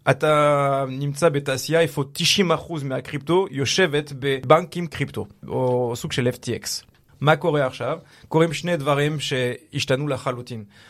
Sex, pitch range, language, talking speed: male, 125-155 Hz, Hebrew, 120 wpm